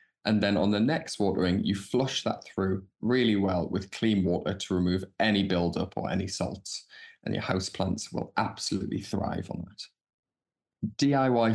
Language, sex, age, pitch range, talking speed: English, male, 20-39, 95-125 Hz, 160 wpm